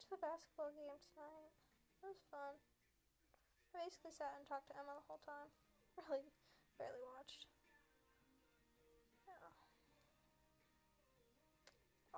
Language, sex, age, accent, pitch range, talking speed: English, female, 10-29, American, 280-345 Hz, 105 wpm